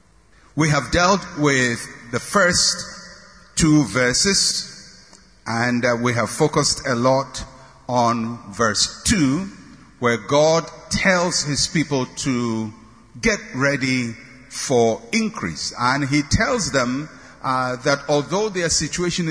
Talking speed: 115 wpm